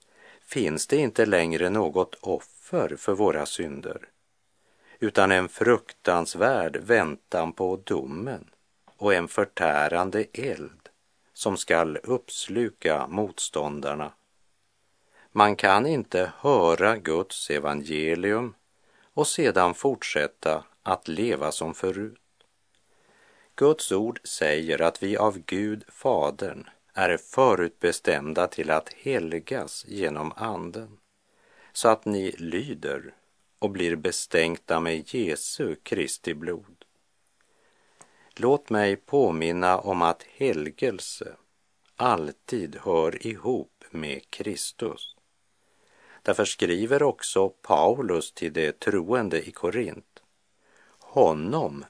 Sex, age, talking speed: male, 50-69, 95 wpm